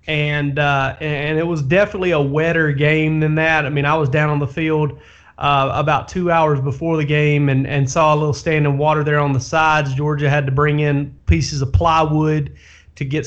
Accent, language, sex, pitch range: American, English, male, 145-160 Hz